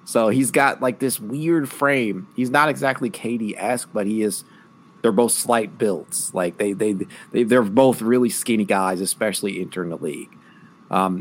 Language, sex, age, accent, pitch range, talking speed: English, male, 30-49, American, 105-135 Hz, 175 wpm